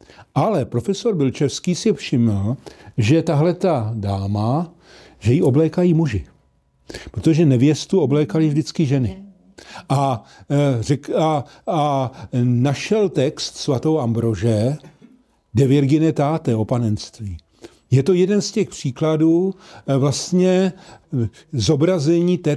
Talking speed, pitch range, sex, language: 100 wpm, 130-175 Hz, male, Slovak